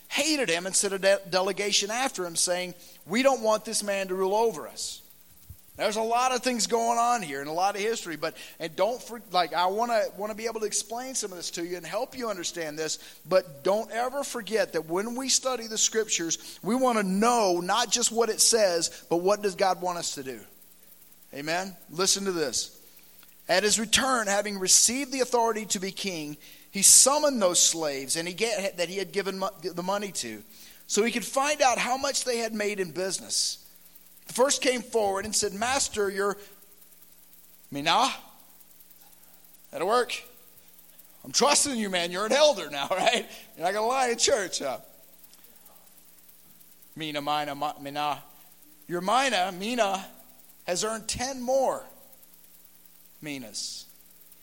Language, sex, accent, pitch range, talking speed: English, male, American, 145-225 Hz, 180 wpm